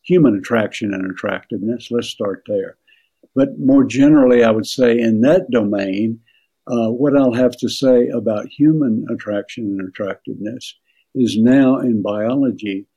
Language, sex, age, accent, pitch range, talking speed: English, male, 60-79, American, 105-125 Hz, 145 wpm